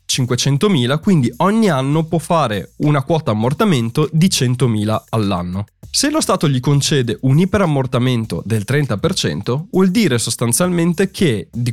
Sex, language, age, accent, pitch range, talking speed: male, Italian, 20-39, native, 115-165 Hz, 135 wpm